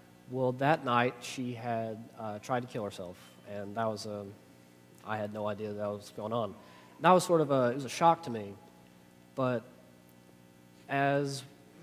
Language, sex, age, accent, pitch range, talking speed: English, male, 20-39, American, 100-130 Hz, 185 wpm